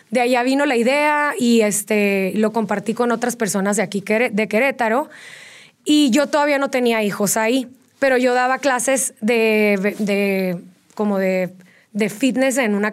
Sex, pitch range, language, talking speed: female, 215-270 Hz, Spanish, 165 wpm